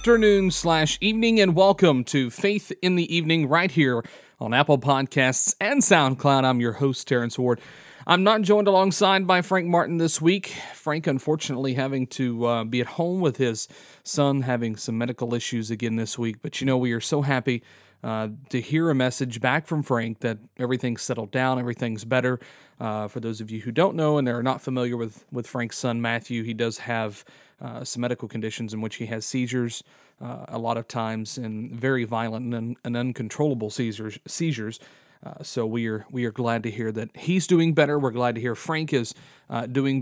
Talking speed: 200 wpm